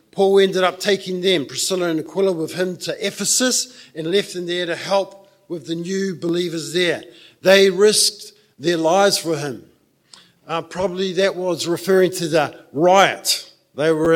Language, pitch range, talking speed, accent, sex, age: English, 160-195 Hz, 165 wpm, Australian, male, 50-69